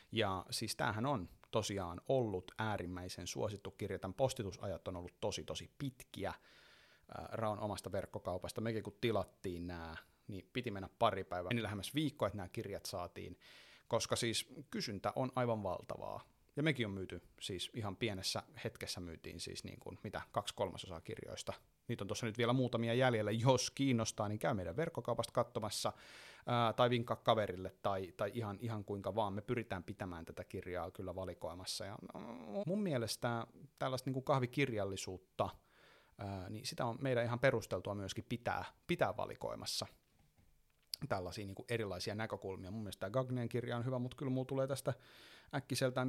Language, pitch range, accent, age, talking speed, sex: Finnish, 95-125 Hz, native, 30-49, 155 wpm, male